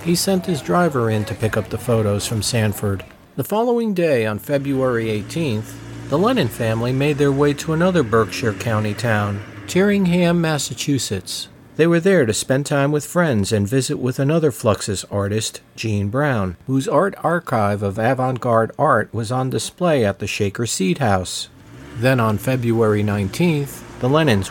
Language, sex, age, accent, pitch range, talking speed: English, male, 50-69, American, 110-155 Hz, 165 wpm